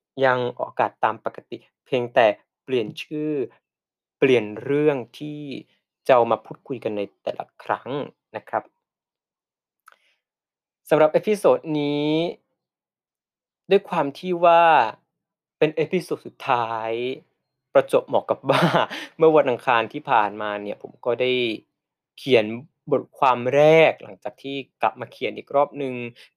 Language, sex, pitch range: Thai, male, 120-155 Hz